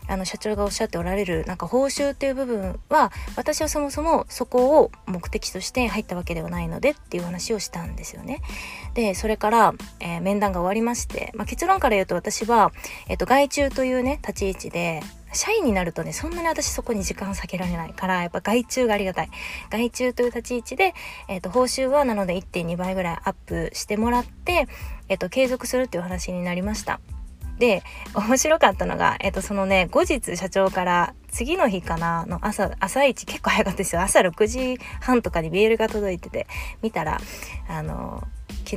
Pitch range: 185-255 Hz